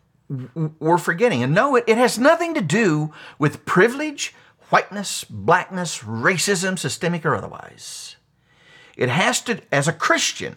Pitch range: 135-205 Hz